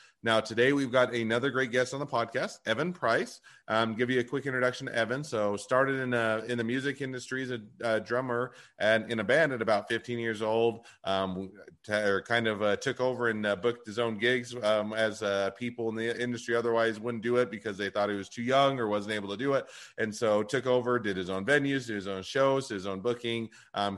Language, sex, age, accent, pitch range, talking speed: English, male, 30-49, American, 100-120 Hz, 230 wpm